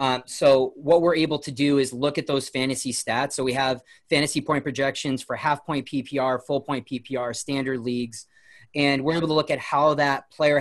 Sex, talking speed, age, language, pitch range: male, 210 wpm, 30-49, English, 130-160 Hz